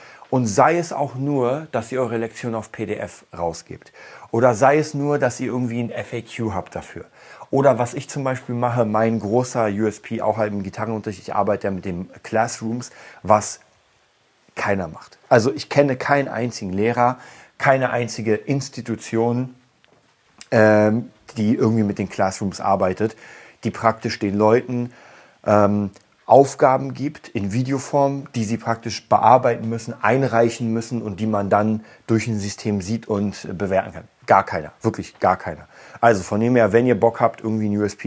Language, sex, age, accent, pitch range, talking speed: German, male, 40-59, German, 100-120 Hz, 165 wpm